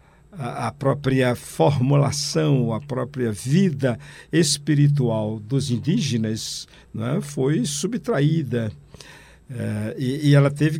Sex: male